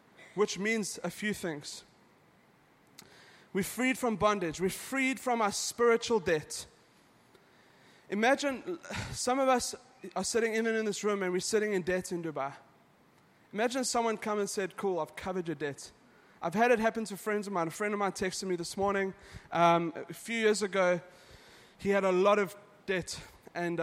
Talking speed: 180 wpm